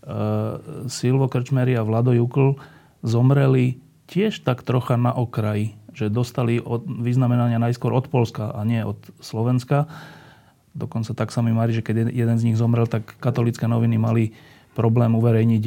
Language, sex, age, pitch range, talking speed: Slovak, male, 30-49, 115-140 Hz, 155 wpm